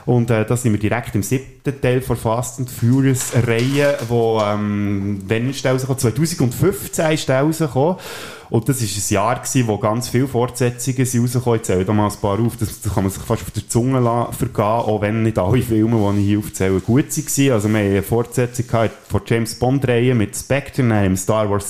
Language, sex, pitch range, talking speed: German, male, 105-130 Hz, 200 wpm